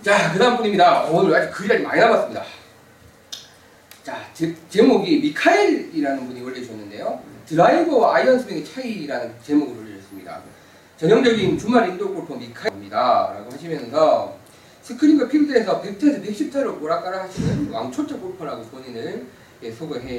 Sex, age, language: male, 40-59, Korean